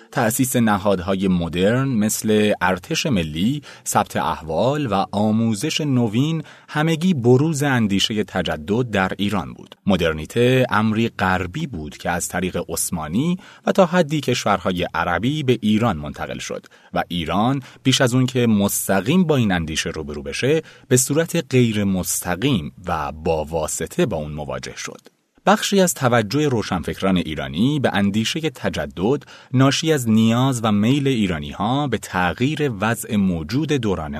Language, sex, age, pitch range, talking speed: Persian, male, 30-49, 95-135 Hz, 140 wpm